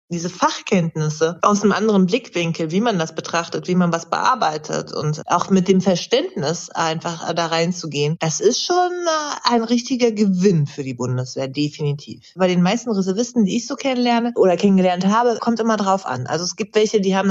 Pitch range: 160-220 Hz